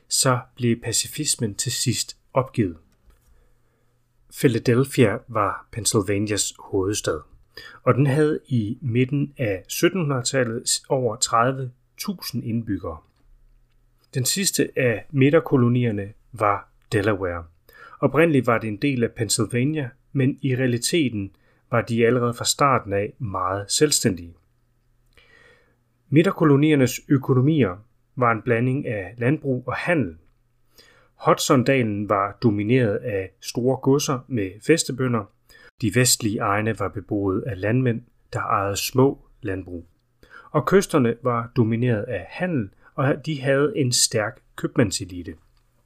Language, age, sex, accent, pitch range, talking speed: Danish, 30-49, male, native, 105-130 Hz, 110 wpm